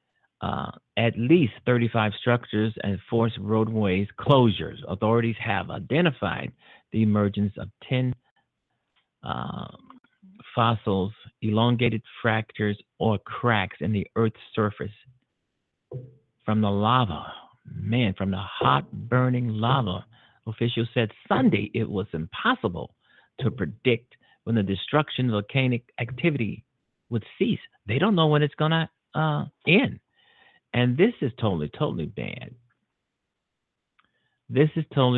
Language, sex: English, male